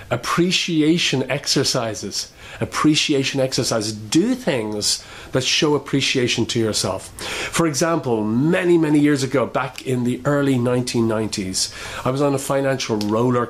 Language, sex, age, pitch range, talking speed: English, male, 40-59, 115-150 Hz, 125 wpm